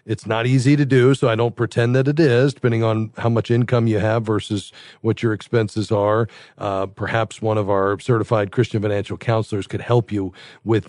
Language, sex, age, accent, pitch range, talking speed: English, male, 40-59, American, 110-130 Hz, 205 wpm